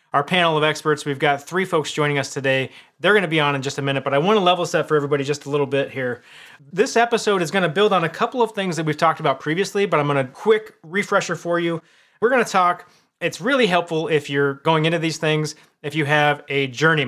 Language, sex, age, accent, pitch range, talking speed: English, male, 30-49, American, 140-180 Hz, 245 wpm